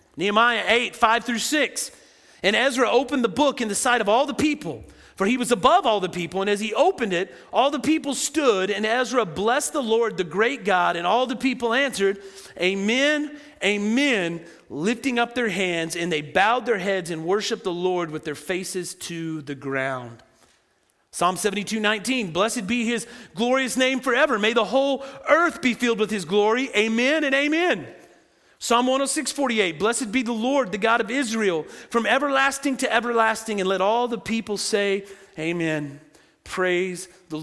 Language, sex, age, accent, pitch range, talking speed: English, male, 40-59, American, 190-250 Hz, 180 wpm